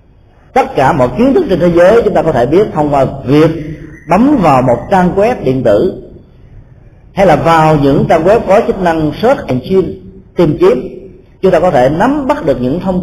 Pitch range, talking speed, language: 125-180 Hz, 205 wpm, Vietnamese